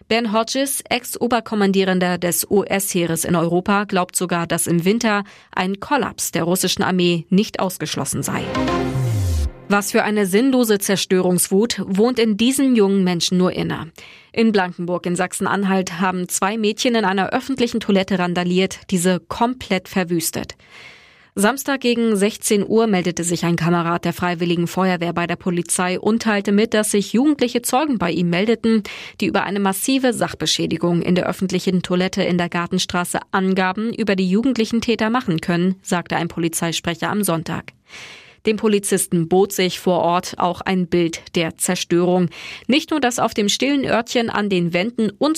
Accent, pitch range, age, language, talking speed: German, 175-220 Hz, 20-39, German, 155 wpm